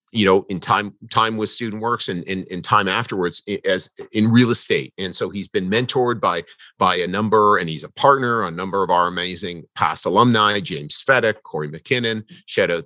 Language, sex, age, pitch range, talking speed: English, male, 40-59, 90-115 Hz, 195 wpm